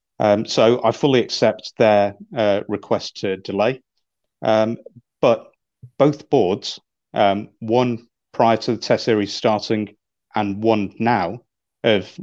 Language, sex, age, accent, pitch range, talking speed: English, male, 40-59, British, 100-115 Hz, 130 wpm